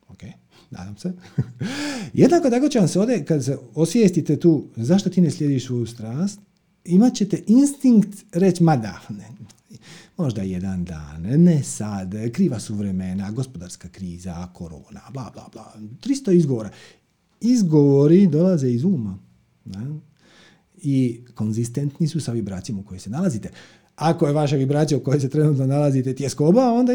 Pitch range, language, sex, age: 120-190 Hz, Croatian, male, 40-59